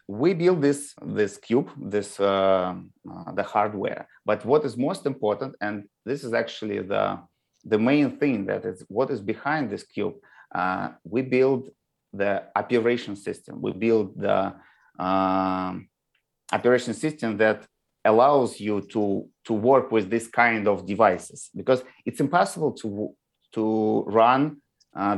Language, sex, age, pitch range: English, male, 30-49, 105-125 Hz